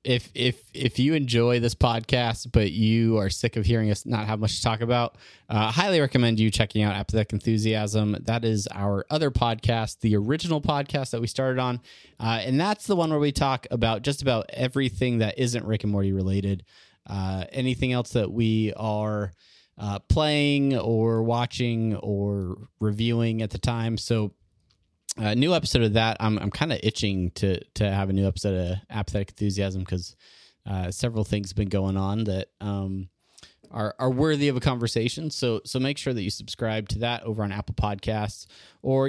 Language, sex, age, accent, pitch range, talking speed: English, male, 20-39, American, 105-125 Hz, 190 wpm